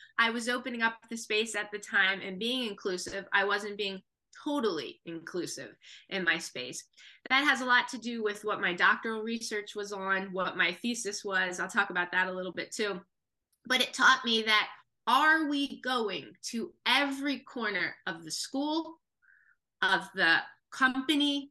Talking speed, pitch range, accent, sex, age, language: 175 wpm, 200-275 Hz, American, female, 20-39, English